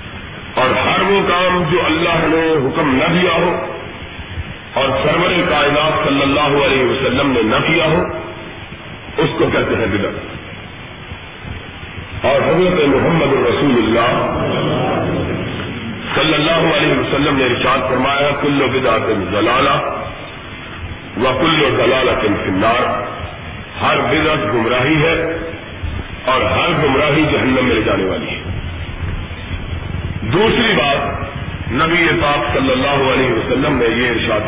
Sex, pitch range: male, 95-155 Hz